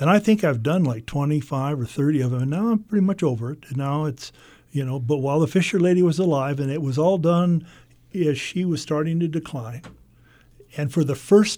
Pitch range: 130-170 Hz